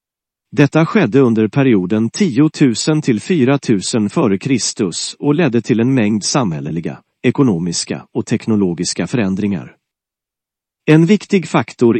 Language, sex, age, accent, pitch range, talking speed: English, male, 40-59, Swedish, 110-150 Hz, 105 wpm